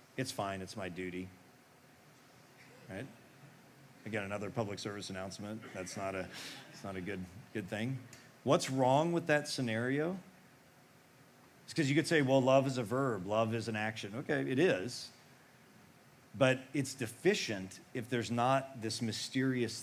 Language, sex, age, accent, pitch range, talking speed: English, male, 40-59, American, 110-145 Hz, 150 wpm